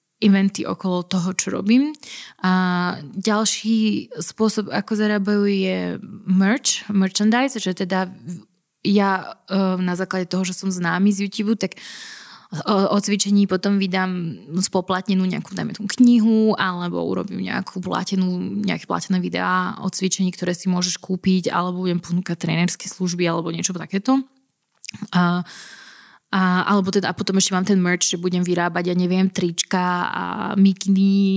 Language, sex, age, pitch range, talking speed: Slovak, female, 20-39, 180-205 Hz, 140 wpm